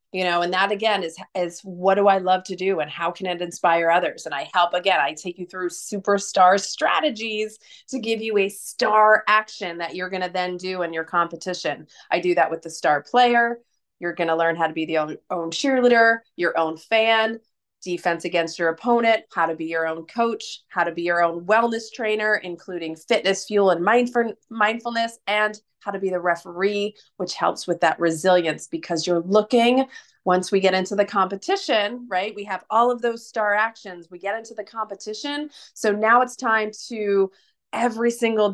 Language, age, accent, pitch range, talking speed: English, 30-49, American, 175-225 Hz, 200 wpm